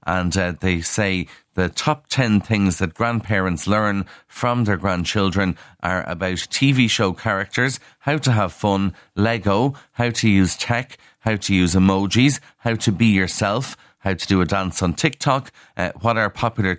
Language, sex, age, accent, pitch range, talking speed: English, male, 30-49, Irish, 90-115 Hz, 170 wpm